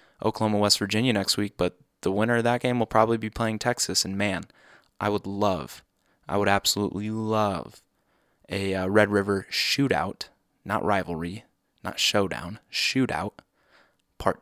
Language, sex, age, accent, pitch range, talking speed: English, male, 20-39, American, 100-115 Hz, 150 wpm